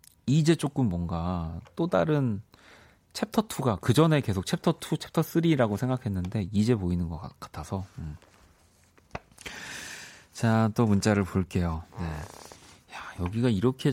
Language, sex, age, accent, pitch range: Korean, male, 30-49, native, 90-140 Hz